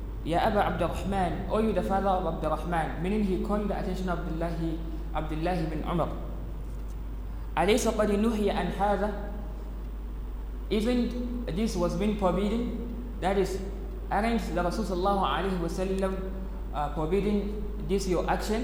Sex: male